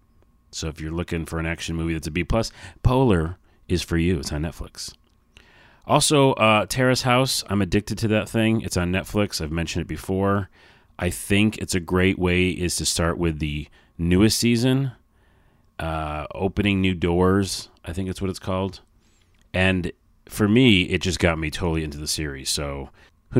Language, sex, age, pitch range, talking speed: English, male, 30-49, 80-105 Hz, 180 wpm